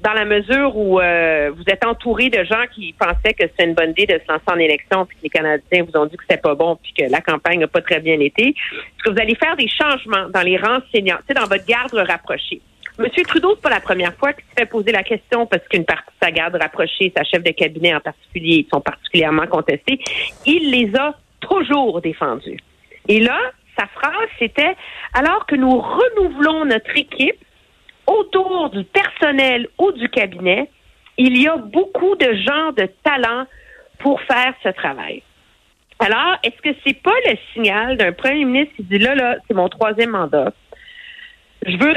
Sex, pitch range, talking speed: female, 185-280 Hz, 200 wpm